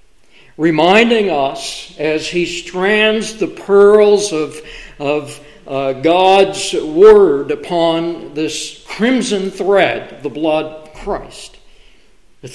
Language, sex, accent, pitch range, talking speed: English, male, American, 150-205 Hz, 100 wpm